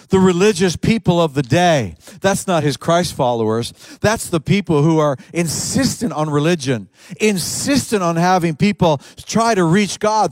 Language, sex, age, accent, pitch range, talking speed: English, male, 50-69, American, 140-205 Hz, 150 wpm